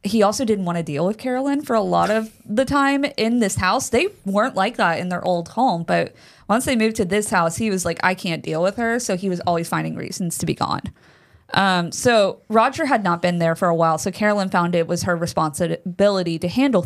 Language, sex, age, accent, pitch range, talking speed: English, female, 20-39, American, 175-225 Hz, 240 wpm